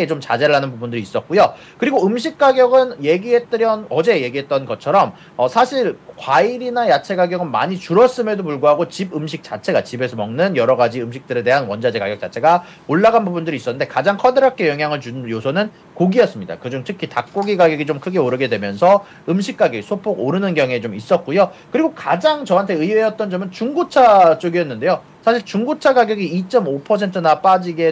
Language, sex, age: Korean, male, 40-59